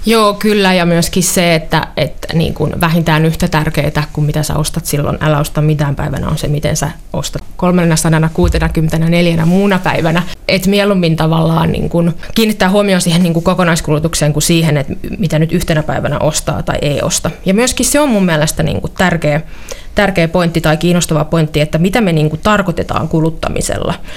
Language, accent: Finnish, native